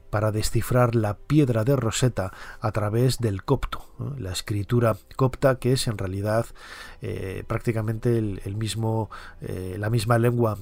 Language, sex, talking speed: Spanish, male, 130 wpm